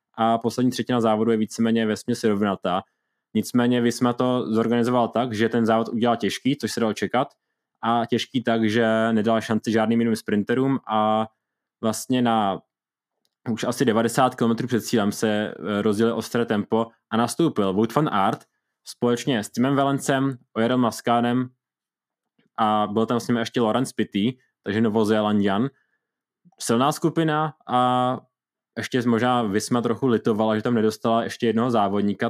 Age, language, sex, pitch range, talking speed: 20-39, Czech, male, 110-125 Hz, 145 wpm